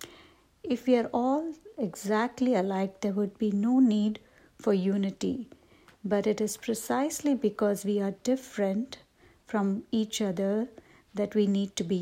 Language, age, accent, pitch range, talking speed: English, 60-79, Indian, 200-240 Hz, 145 wpm